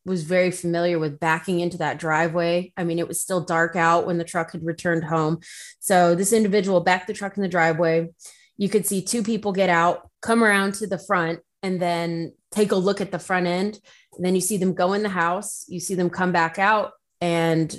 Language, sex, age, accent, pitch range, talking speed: English, female, 30-49, American, 165-185 Hz, 225 wpm